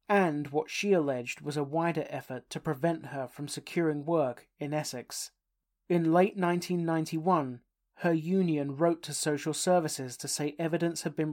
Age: 40-59